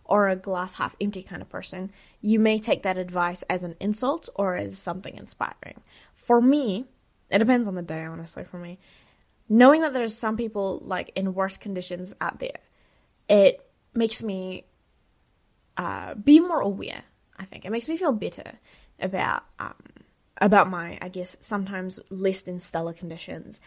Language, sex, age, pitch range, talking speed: English, female, 10-29, 185-240 Hz, 165 wpm